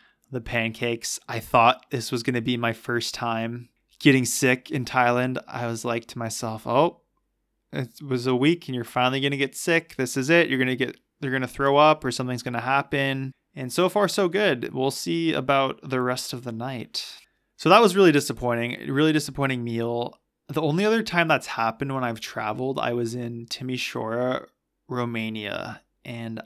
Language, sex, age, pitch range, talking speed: English, male, 20-39, 120-140 Hz, 195 wpm